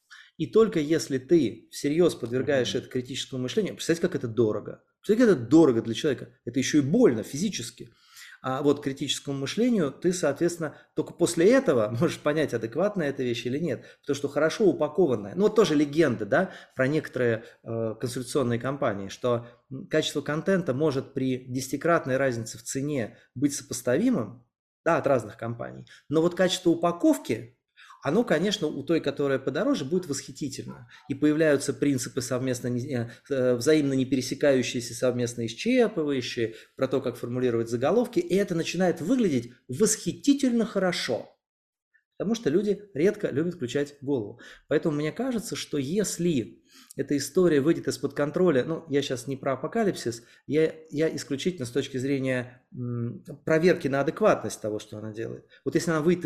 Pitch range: 125-170 Hz